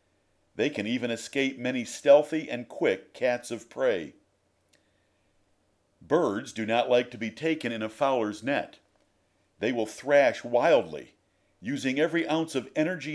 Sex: male